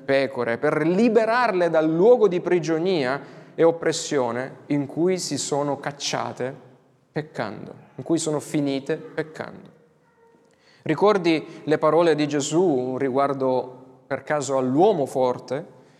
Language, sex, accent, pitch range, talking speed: Italian, male, native, 135-180 Hz, 115 wpm